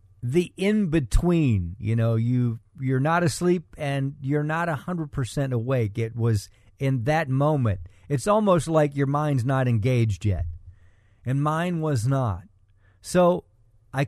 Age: 50-69